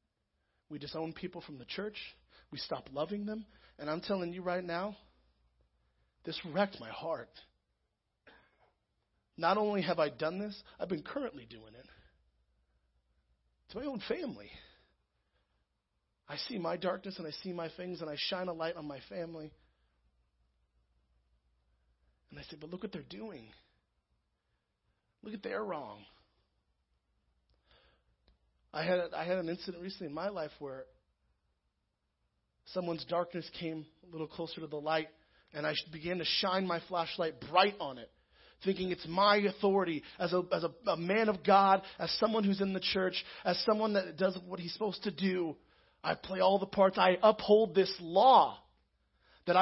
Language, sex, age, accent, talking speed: English, male, 40-59, American, 160 wpm